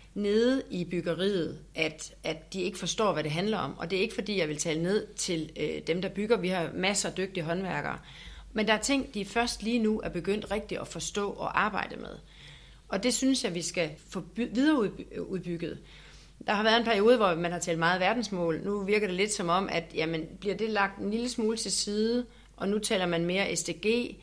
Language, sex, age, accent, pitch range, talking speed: Danish, female, 40-59, native, 170-220 Hz, 215 wpm